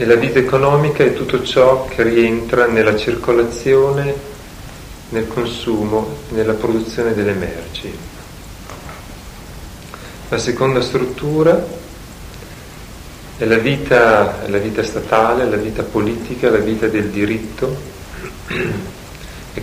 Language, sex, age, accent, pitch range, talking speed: Italian, male, 40-59, native, 100-120 Hz, 100 wpm